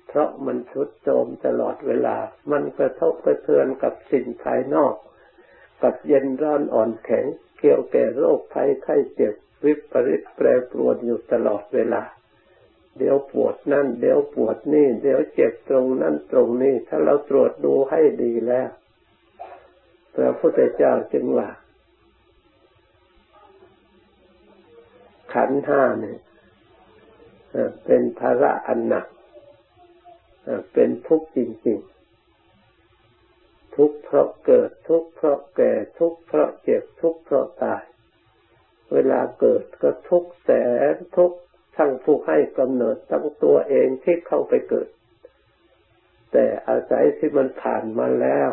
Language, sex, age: Thai, male, 60-79